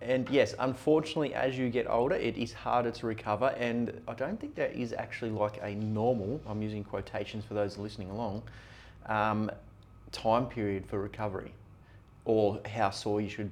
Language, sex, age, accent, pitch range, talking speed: English, male, 30-49, Australian, 105-120 Hz, 175 wpm